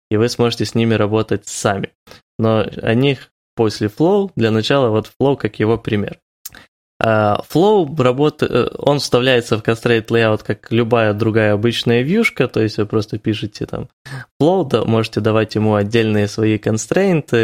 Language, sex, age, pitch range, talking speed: Ukrainian, male, 20-39, 110-125 Hz, 155 wpm